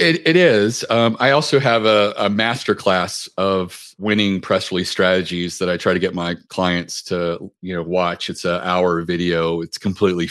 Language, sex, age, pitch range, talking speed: English, male, 40-59, 85-100 Hz, 185 wpm